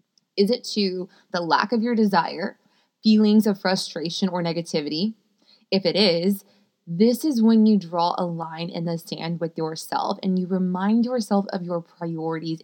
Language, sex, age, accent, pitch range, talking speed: English, female, 20-39, American, 175-210 Hz, 165 wpm